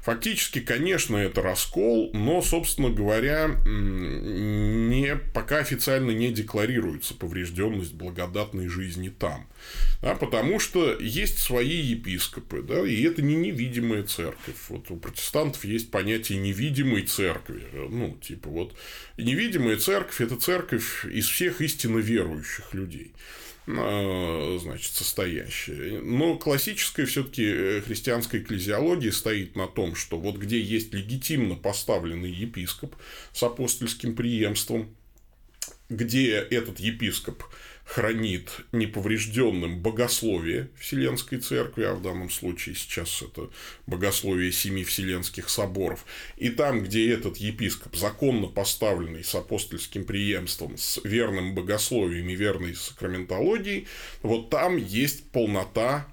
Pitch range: 95-120 Hz